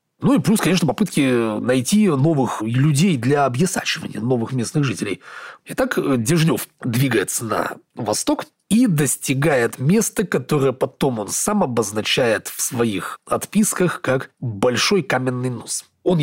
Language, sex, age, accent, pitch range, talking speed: Russian, male, 30-49, native, 120-160 Hz, 125 wpm